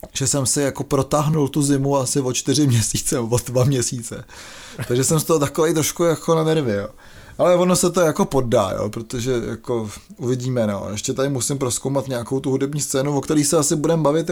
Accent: native